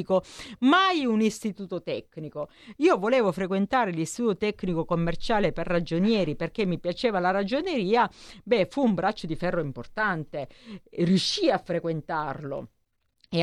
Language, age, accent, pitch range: Italian, 50-69, native, 175-230 Hz